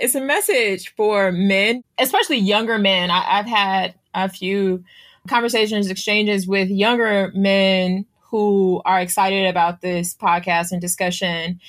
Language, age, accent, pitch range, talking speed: English, 20-39, American, 175-200 Hz, 130 wpm